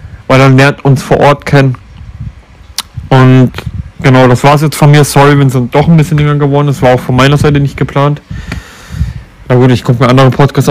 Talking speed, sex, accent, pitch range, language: 215 wpm, male, German, 125-140 Hz, German